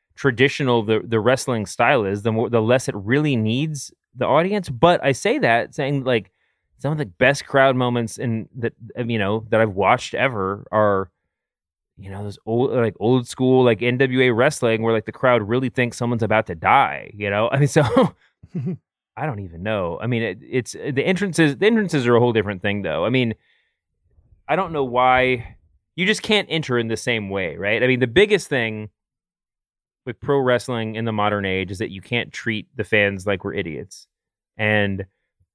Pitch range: 110-135 Hz